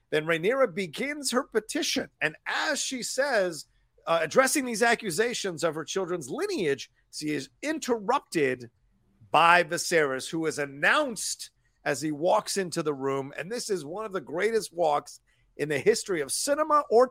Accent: American